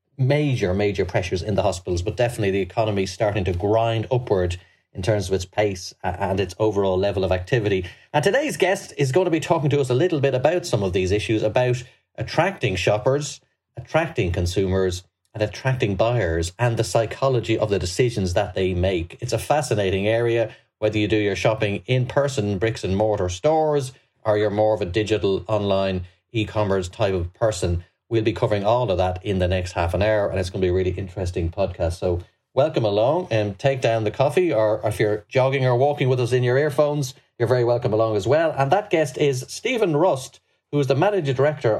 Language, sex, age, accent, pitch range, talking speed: English, male, 30-49, Irish, 95-135 Hz, 205 wpm